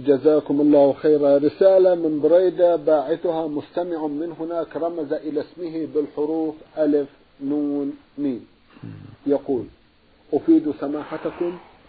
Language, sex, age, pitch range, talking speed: Arabic, male, 50-69, 145-170 Hz, 100 wpm